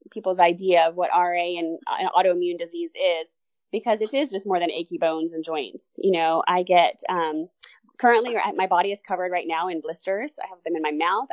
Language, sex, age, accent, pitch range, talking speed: English, female, 20-39, American, 170-210 Hz, 205 wpm